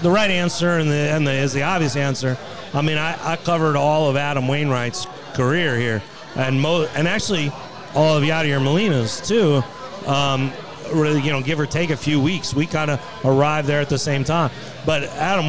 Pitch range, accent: 140-165 Hz, American